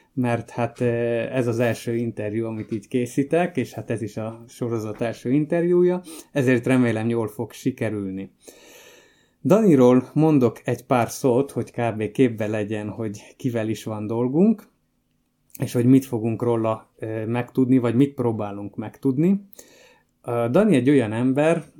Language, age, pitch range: Hungarian, 20-39, 115-140 Hz